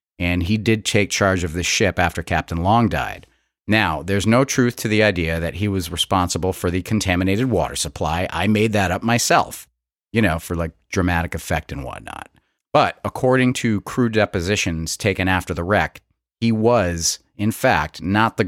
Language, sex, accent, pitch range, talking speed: English, male, American, 85-105 Hz, 180 wpm